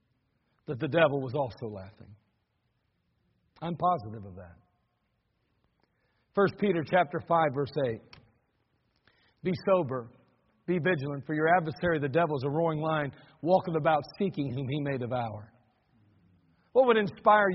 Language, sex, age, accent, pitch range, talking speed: English, male, 60-79, American, 135-200 Hz, 135 wpm